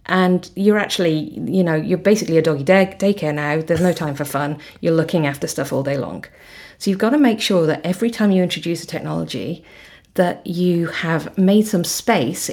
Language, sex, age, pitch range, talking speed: English, female, 40-59, 160-195 Hz, 200 wpm